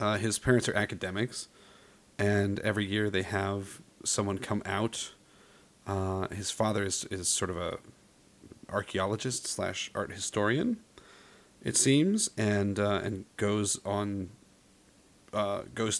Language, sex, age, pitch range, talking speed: English, male, 30-49, 95-110 Hz, 130 wpm